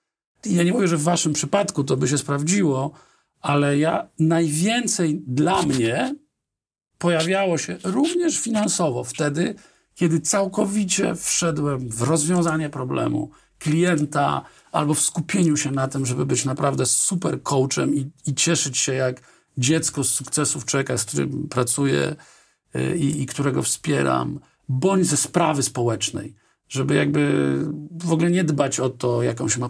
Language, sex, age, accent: Polish, male, 50-69, native